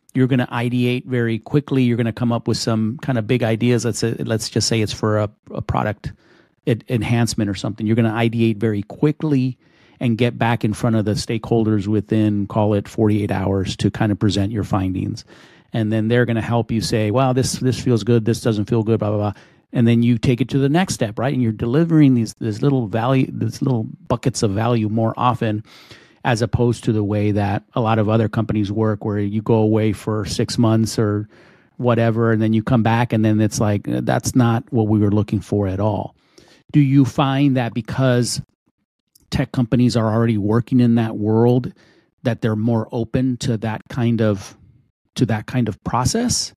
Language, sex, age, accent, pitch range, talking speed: English, male, 40-59, American, 110-125 Hz, 205 wpm